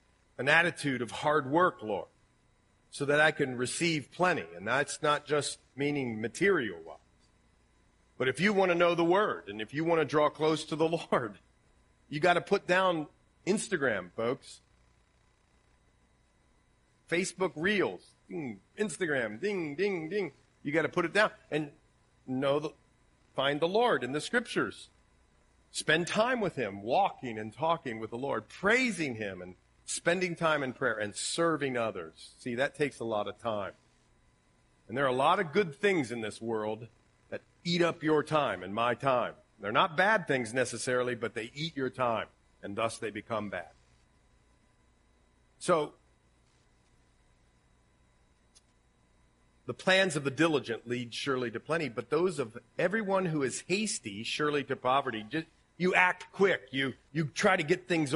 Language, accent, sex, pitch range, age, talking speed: English, American, male, 110-170 Hz, 40-59, 160 wpm